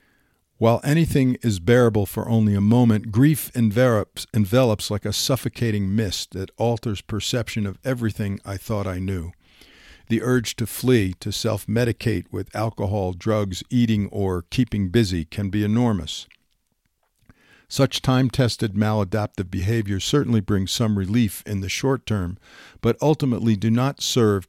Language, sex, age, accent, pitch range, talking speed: English, male, 50-69, American, 100-120 Hz, 140 wpm